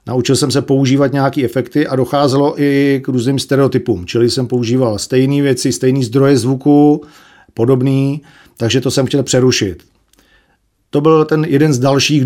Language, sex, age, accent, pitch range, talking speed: Czech, male, 40-59, native, 125-150 Hz, 155 wpm